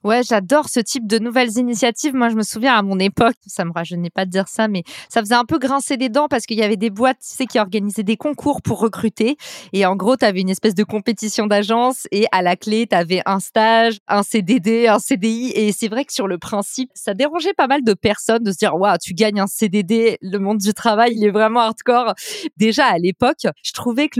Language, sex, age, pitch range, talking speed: French, female, 20-39, 205-250 Hz, 255 wpm